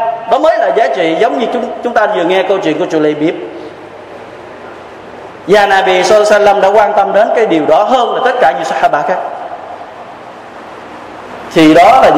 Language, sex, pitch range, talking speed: Vietnamese, male, 180-195 Hz, 145 wpm